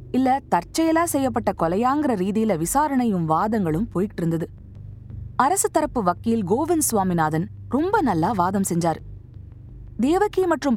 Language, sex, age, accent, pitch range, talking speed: Tamil, female, 20-39, native, 170-270 Hz, 110 wpm